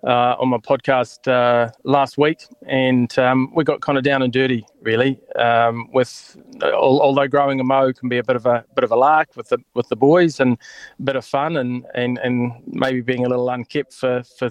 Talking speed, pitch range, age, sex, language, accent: 215 wpm, 120-135 Hz, 20-39, male, English, Australian